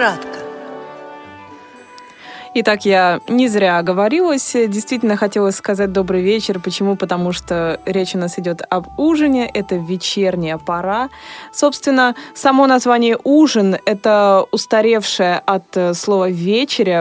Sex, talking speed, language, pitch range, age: female, 110 wpm, Russian, 175-245 Hz, 20-39